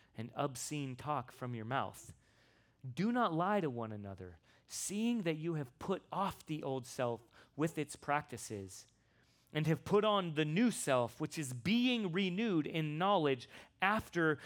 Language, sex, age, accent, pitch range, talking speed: English, male, 30-49, American, 115-165 Hz, 160 wpm